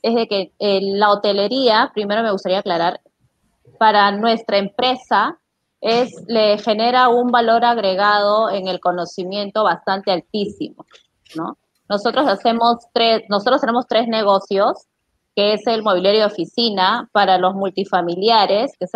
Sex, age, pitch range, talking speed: female, 20-39, 190-230 Hz, 135 wpm